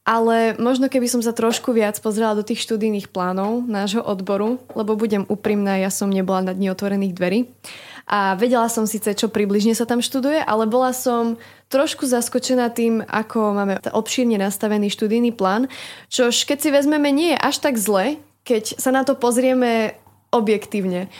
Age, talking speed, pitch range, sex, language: 20-39, 170 wpm, 210-245 Hz, female, Slovak